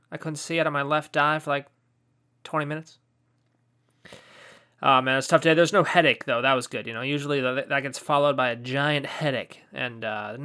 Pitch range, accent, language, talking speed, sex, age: 135-170 Hz, American, English, 205 wpm, male, 20-39